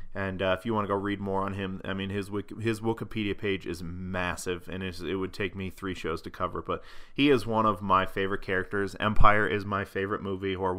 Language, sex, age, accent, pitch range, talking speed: English, male, 20-39, American, 95-115 Hz, 235 wpm